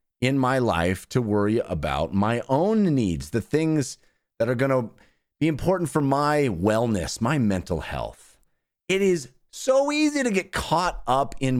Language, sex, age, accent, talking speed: English, male, 30-49, American, 160 wpm